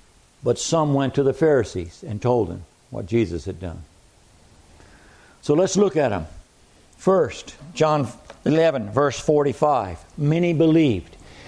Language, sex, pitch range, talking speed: English, male, 125-175 Hz, 130 wpm